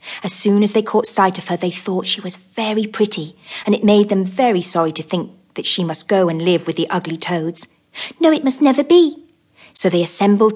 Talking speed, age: 225 wpm, 40-59